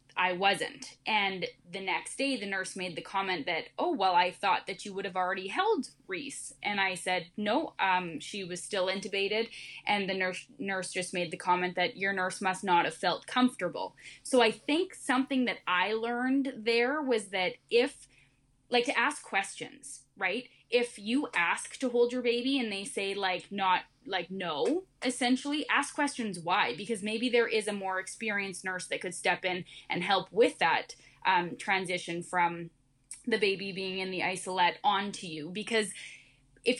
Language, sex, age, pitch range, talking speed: English, female, 10-29, 185-235 Hz, 180 wpm